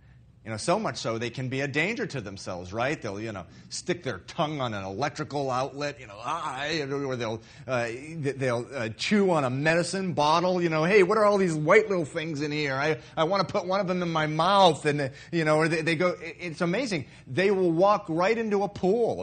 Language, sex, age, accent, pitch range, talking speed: English, male, 30-49, American, 120-160 Hz, 235 wpm